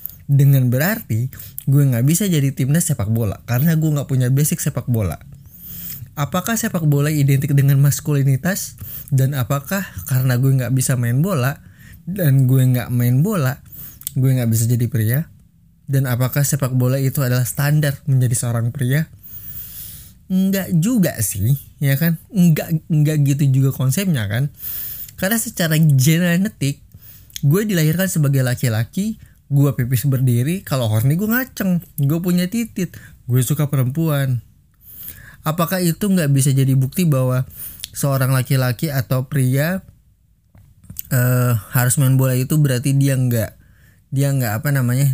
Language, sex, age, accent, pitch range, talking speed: Indonesian, male, 20-39, native, 120-150 Hz, 140 wpm